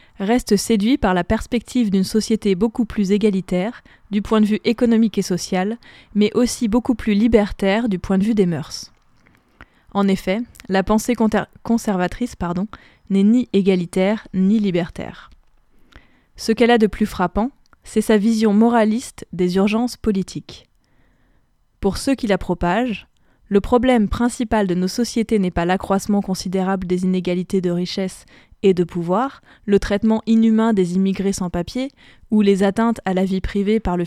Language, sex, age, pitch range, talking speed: French, female, 20-39, 190-225 Hz, 160 wpm